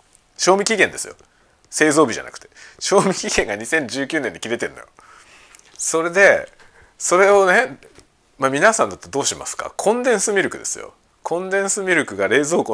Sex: male